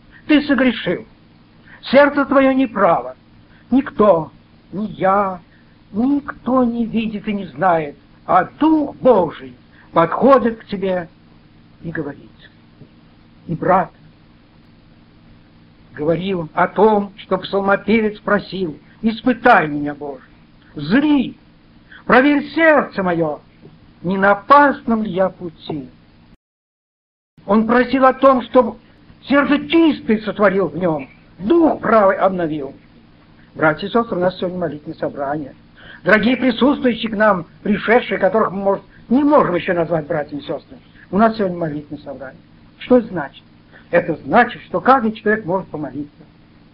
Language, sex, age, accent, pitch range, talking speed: Russian, male, 60-79, native, 165-240 Hz, 120 wpm